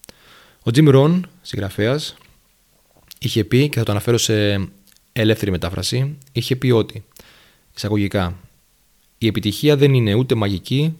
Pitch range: 105-135 Hz